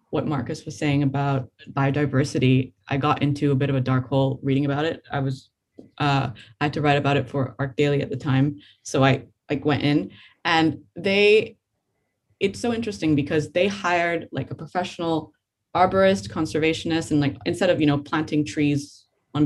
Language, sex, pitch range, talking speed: English, female, 140-165 Hz, 185 wpm